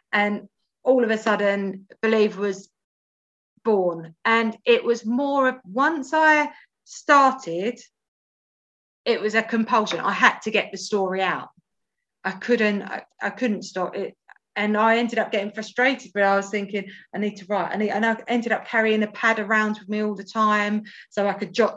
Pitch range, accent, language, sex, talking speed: 195-225 Hz, British, English, female, 180 wpm